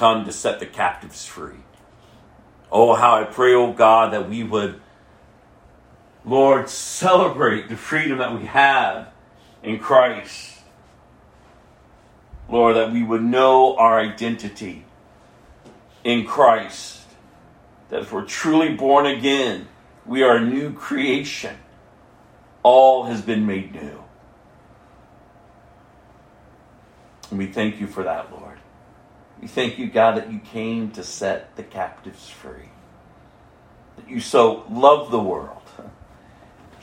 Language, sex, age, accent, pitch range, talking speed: English, male, 50-69, American, 100-130 Hz, 120 wpm